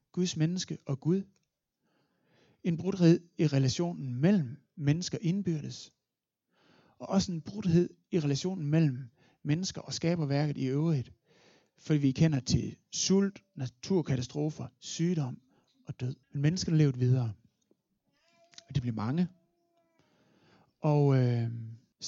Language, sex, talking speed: Danish, male, 115 wpm